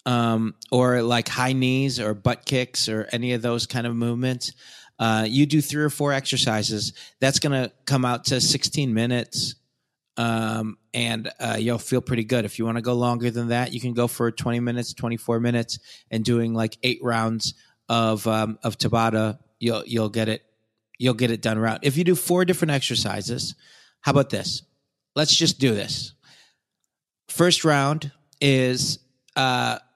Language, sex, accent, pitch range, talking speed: English, male, American, 115-135 Hz, 175 wpm